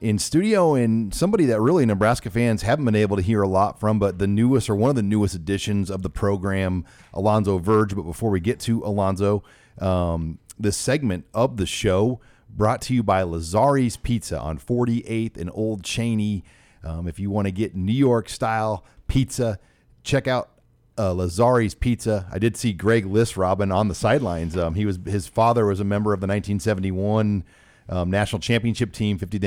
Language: English